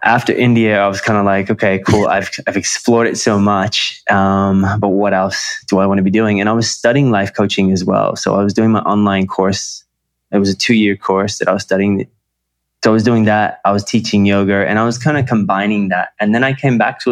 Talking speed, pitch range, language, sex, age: 250 wpm, 95-110 Hz, English, male, 20-39